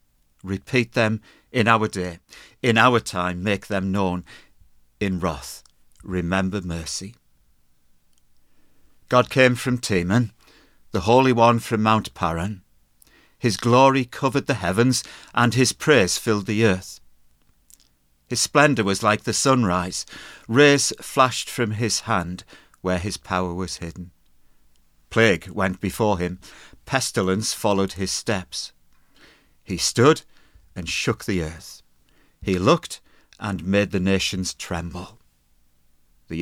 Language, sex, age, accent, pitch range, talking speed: English, male, 50-69, British, 85-120 Hz, 120 wpm